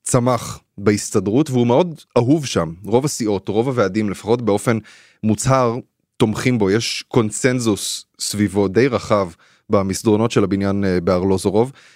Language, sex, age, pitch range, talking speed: Hebrew, male, 20-39, 100-120 Hz, 120 wpm